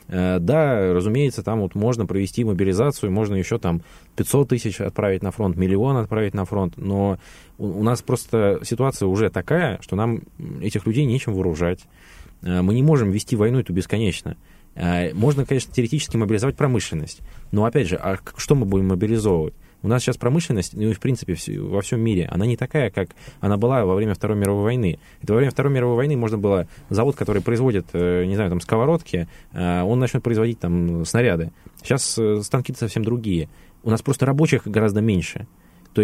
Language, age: Russian, 20-39